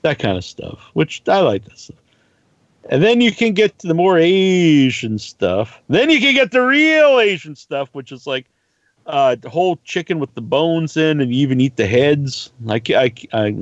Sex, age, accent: male, 50-69, American